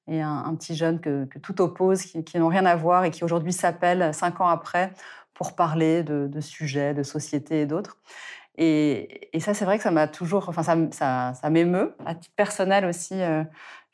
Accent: French